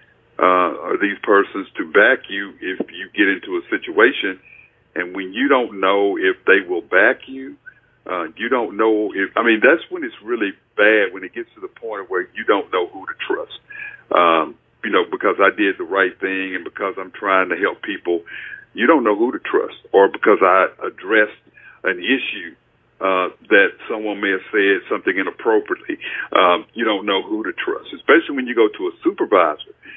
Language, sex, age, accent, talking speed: English, male, 50-69, American, 195 wpm